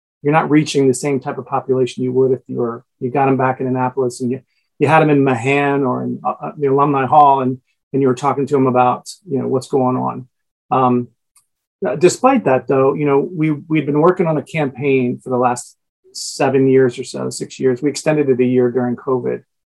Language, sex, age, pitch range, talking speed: English, male, 40-59, 125-145 Hz, 225 wpm